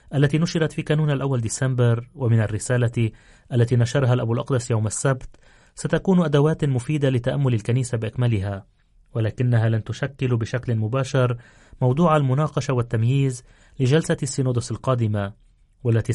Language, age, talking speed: Arabic, 30-49, 120 wpm